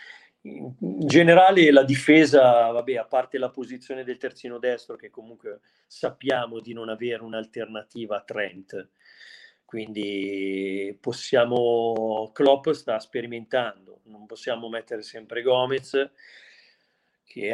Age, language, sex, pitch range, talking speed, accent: 40-59, Italian, male, 110-125 Hz, 110 wpm, native